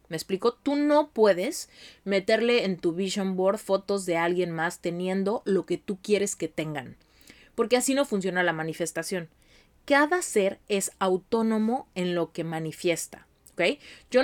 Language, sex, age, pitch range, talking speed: Spanish, female, 30-49, 175-235 Hz, 155 wpm